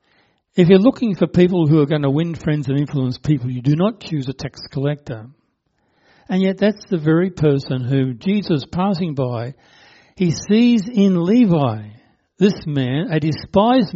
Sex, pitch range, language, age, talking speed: male, 135-185 Hz, English, 60-79, 170 wpm